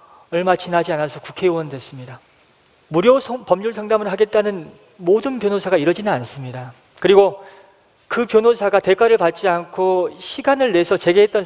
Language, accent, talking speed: English, Korean, 115 wpm